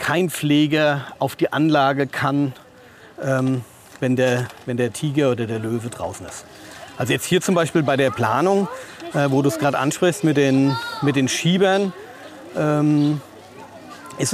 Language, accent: German, German